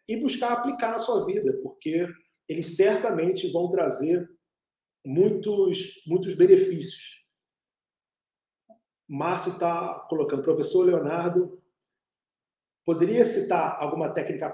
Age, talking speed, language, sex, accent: 40-59, 95 wpm, Portuguese, male, Brazilian